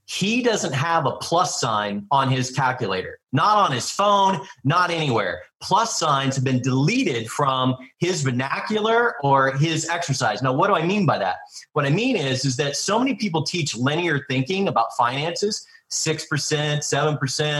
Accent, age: American, 30-49